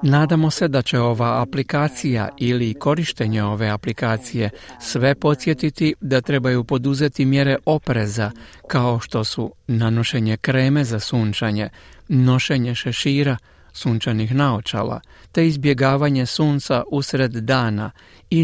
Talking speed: 110 wpm